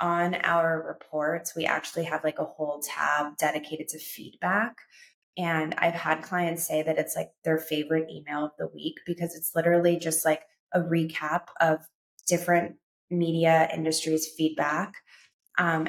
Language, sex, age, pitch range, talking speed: English, female, 20-39, 155-175 Hz, 150 wpm